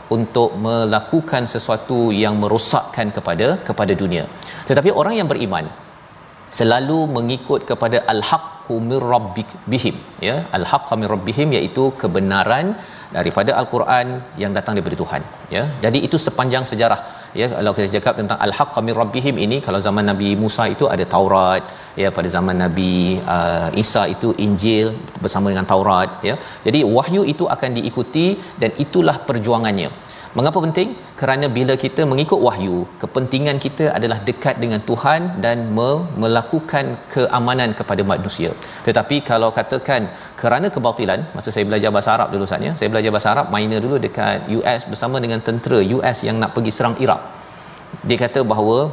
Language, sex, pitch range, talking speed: Malayalam, male, 110-140 Hz, 150 wpm